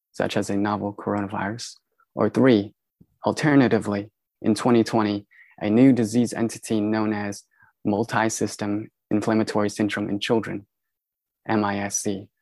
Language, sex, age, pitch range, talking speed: English, male, 20-39, 105-115 Hz, 110 wpm